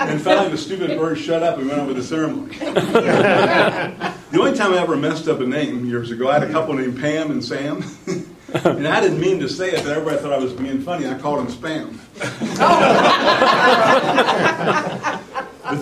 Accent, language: American, English